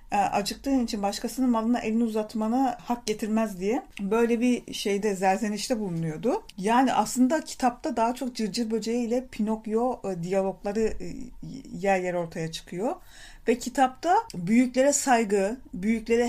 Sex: female